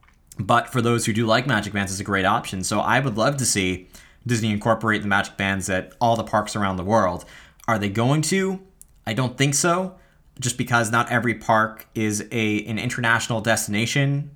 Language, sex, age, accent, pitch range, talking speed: English, male, 20-39, American, 100-120 Hz, 200 wpm